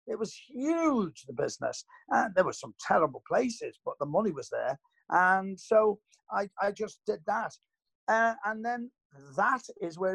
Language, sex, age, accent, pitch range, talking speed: English, male, 50-69, British, 140-180 Hz, 170 wpm